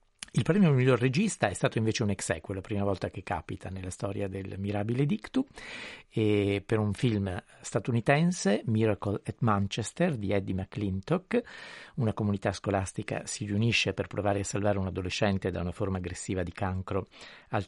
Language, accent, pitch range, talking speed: Italian, native, 95-120 Hz, 160 wpm